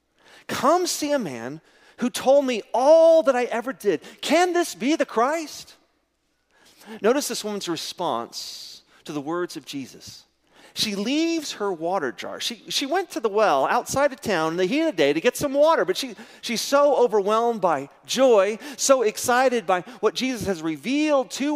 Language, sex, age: English, male, 40-59